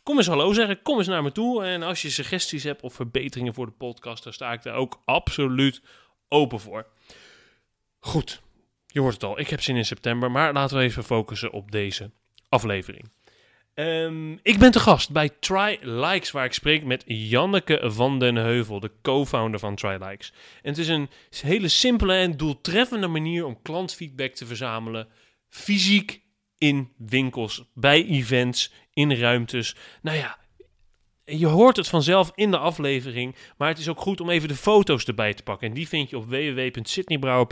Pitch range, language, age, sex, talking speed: 120-165 Hz, Dutch, 30-49, male, 180 wpm